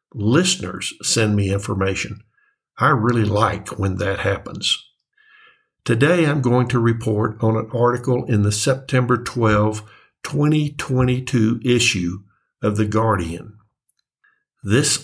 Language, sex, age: English, male, 60-79